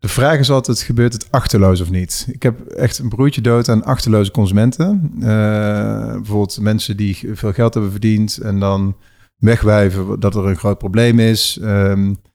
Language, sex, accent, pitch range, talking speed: Dutch, male, Dutch, 100-115 Hz, 175 wpm